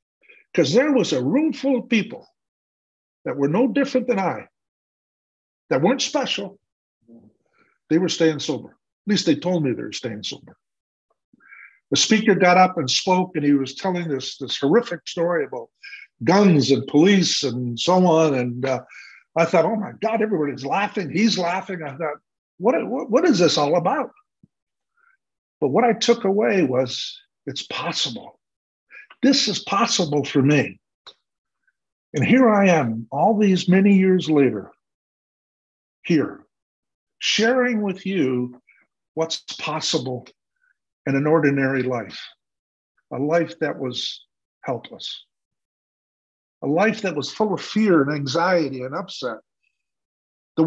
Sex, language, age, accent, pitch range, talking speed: male, English, 60-79, American, 140-220 Hz, 140 wpm